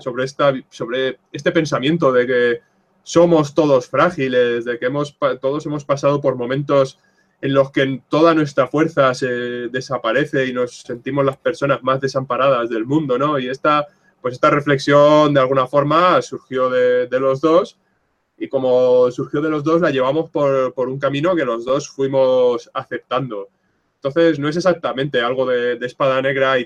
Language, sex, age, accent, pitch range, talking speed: English, male, 20-39, Spanish, 130-155 Hz, 170 wpm